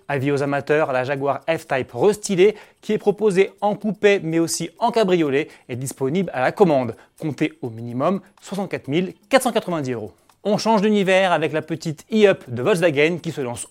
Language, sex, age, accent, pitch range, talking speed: French, male, 30-49, French, 140-190 Hz, 170 wpm